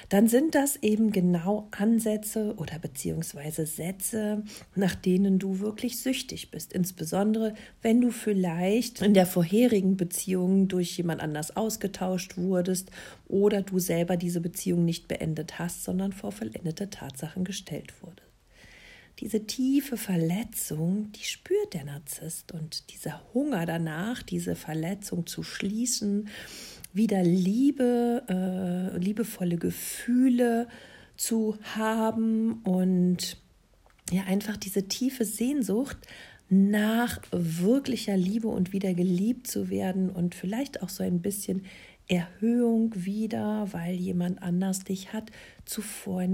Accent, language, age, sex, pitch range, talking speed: German, German, 50-69, female, 175-220 Hz, 120 wpm